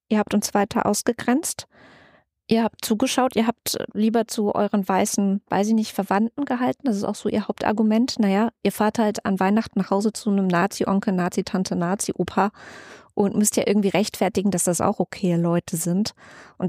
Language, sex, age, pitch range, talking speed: German, female, 20-39, 185-225 Hz, 180 wpm